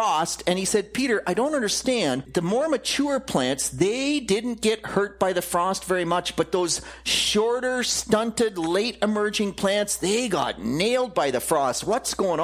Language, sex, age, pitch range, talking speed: English, male, 40-59, 175-235 Hz, 170 wpm